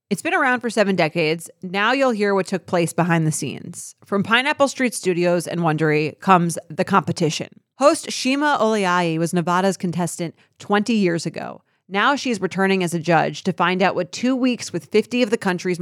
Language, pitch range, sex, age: English, 170-210 Hz, female, 30-49